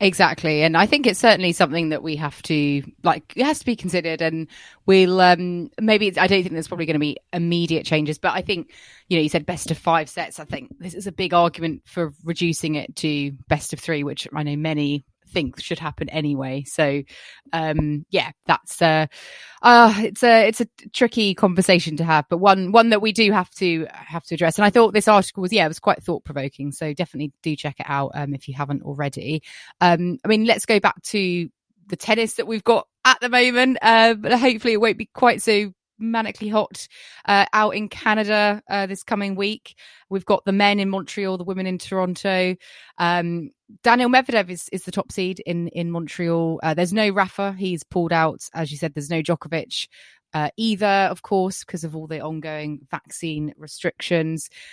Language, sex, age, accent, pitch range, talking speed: English, female, 20-39, British, 160-210 Hz, 205 wpm